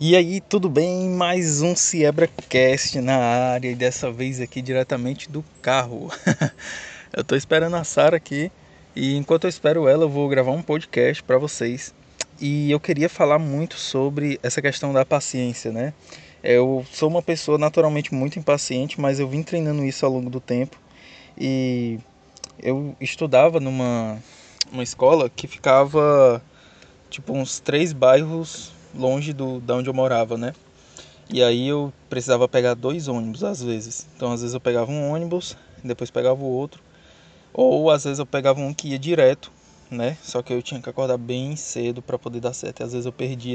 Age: 20-39